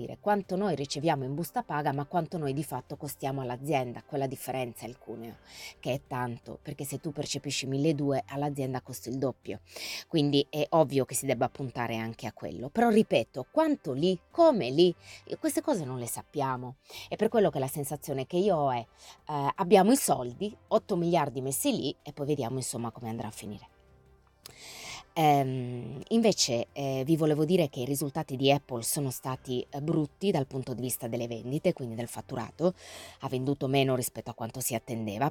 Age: 20-39